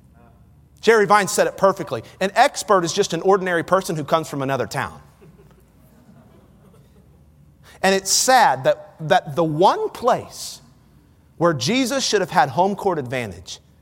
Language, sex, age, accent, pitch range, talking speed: English, male, 40-59, American, 150-215 Hz, 145 wpm